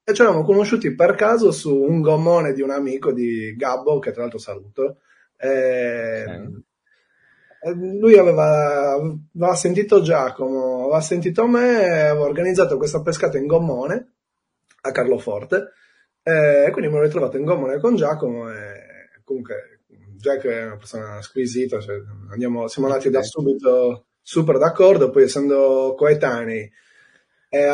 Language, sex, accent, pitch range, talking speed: Italian, male, native, 130-180 Hz, 135 wpm